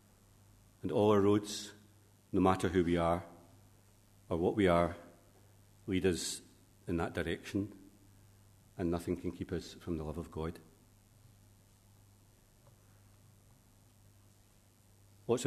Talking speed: 115 wpm